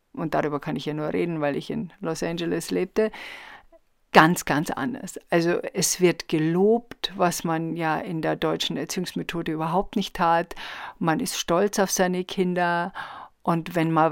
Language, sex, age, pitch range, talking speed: German, female, 50-69, 170-215 Hz, 165 wpm